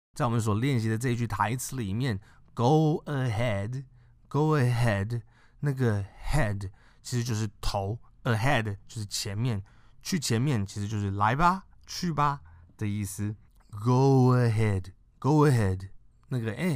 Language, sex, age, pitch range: Chinese, male, 20-39, 100-125 Hz